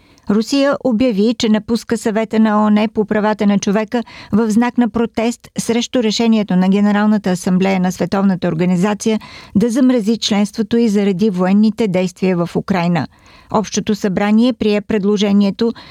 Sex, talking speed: female, 135 wpm